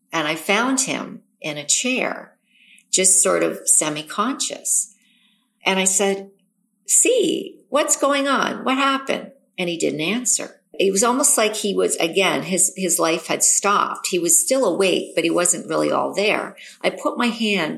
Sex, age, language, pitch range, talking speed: female, 50-69, English, 170-230 Hz, 170 wpm